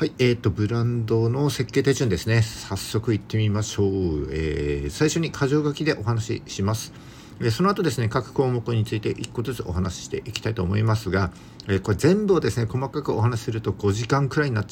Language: Japanese